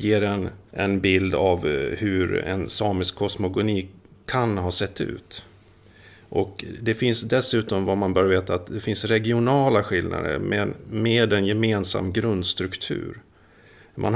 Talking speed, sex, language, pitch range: 135 wpm, male, Swedish, 90-110 Hz